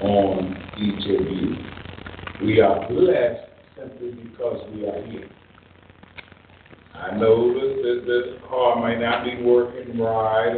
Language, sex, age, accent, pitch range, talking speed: English, male, 50-69, American, 95-135 Hz, 130 wpm